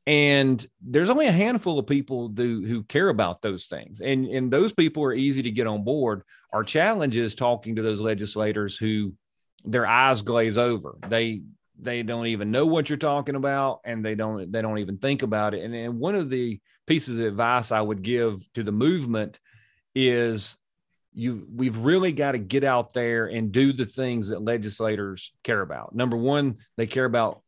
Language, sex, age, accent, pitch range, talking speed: English, male, 30-49, American, 110-135 Hz, 195 wpm